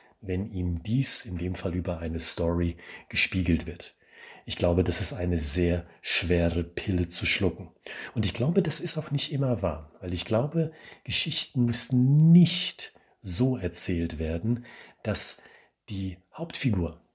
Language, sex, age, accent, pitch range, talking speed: German, male, 40-59, German, 90-140 Hz, 145 wpm